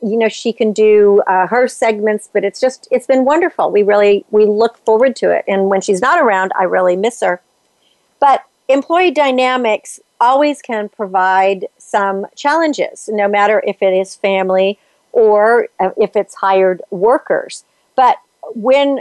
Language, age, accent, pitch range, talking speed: English, 50-69, American, 195-235 Hz, 165 wpm